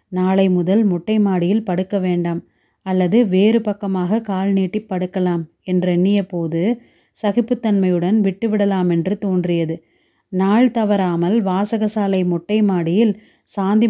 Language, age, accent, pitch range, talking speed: Tamil, 30-49, native, 180-215 Hz, 95 wpm